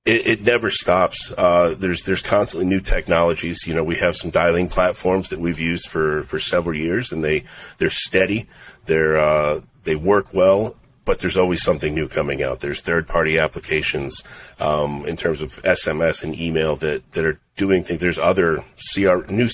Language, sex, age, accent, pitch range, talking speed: English, male, 40-59, American, 80-90 Hz, 185 wpm